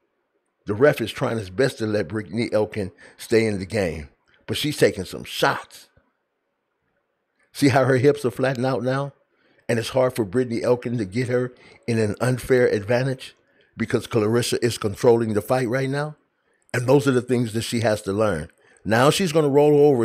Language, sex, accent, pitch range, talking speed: English, male, American, 110-135 Hz, 190 wpm